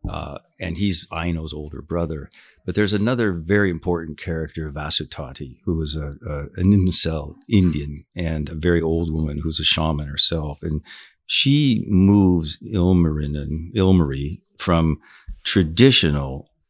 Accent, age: American, 60-79